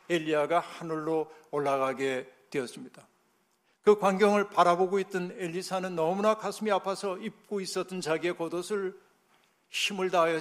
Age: 60-79